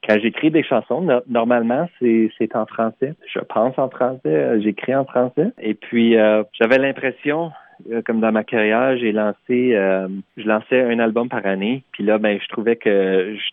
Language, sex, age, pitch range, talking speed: French, male, 30-49, 100-130 Hz, 185 wpm